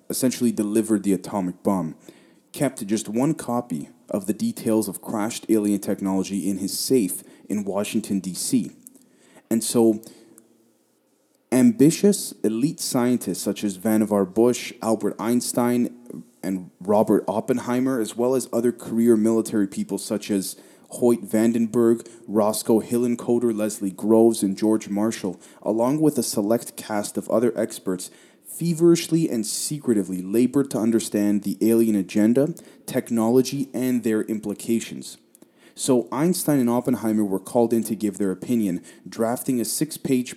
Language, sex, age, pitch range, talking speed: English, male, 20-39, 105-120 Hz, 130 wpm